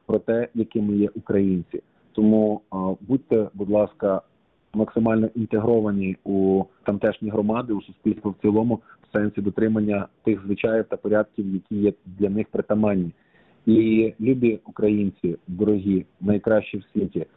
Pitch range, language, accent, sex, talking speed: 105-115 Hz, Ukrainian, native, male, 130 wpm